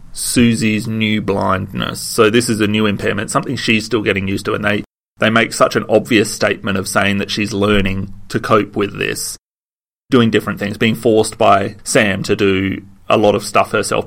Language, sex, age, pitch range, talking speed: English, male, 30-49, 100-120 Hz, 195 wpm